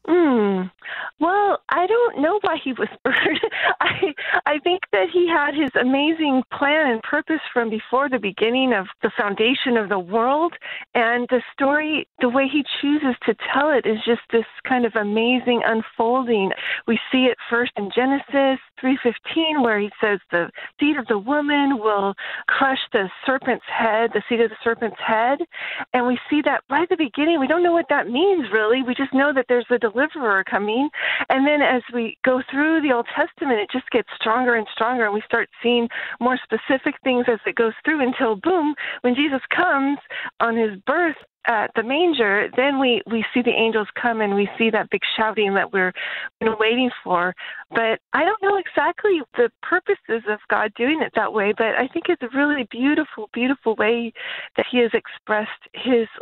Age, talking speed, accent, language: 40-59, 190 wpm, American, English